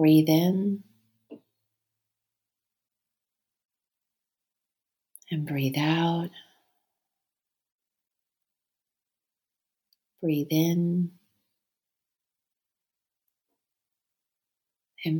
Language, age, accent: English, 30-49, American